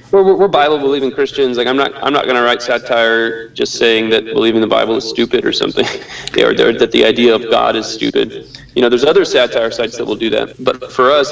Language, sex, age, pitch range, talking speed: English, male, 30-49, 115-130 Hz, 245 wpm